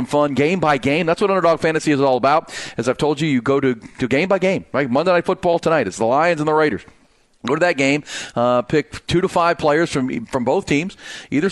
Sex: male